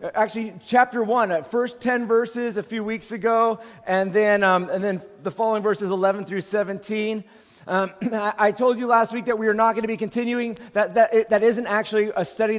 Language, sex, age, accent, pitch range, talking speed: English, male, 30-49, American, 200-245 Hz, 210 wpm